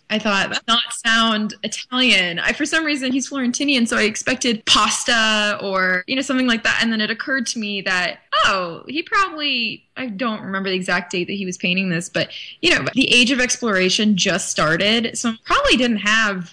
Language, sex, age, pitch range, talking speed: English, female, 20-39, 185-235 Hz, 205 wpm